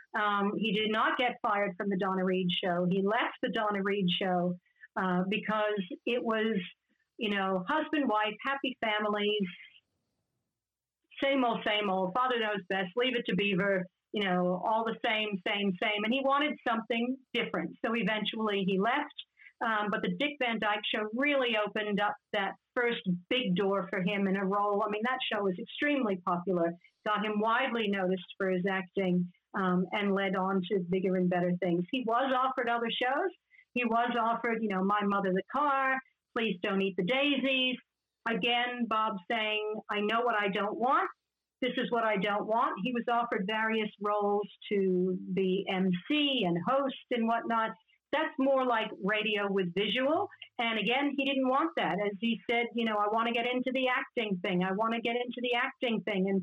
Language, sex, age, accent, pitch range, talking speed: English, female, 50-69, American, 195-245 Hz, 185 wpm